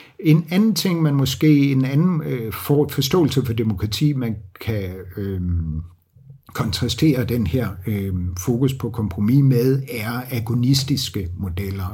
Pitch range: 110-150 Hz